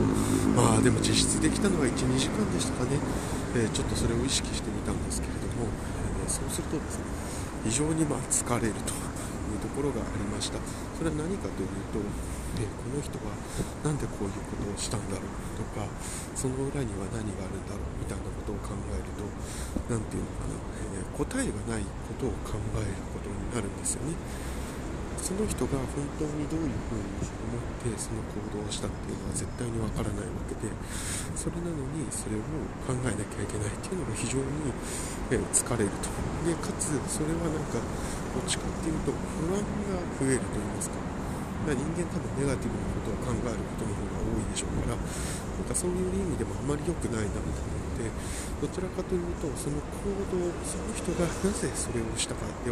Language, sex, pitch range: Japanese, male, 95-120 Hz